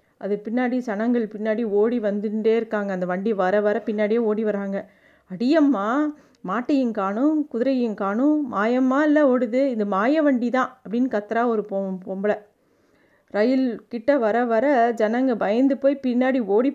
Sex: female